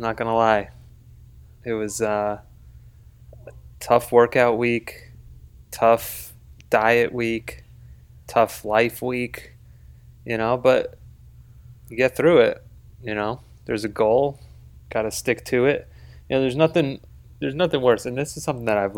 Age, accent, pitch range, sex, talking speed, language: 20-39, American, 100-120 Hz, male, 140 wpm, English